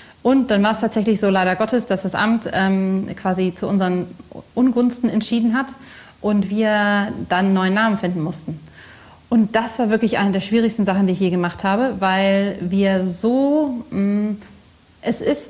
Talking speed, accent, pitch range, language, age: 175 wpm, German, 185-220 Hz, German, 30-49